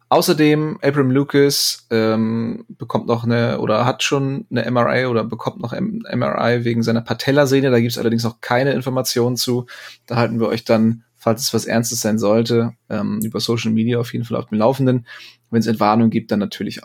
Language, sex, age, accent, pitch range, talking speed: German, male, 20-39, German, 110-125 Hz, 195 wpm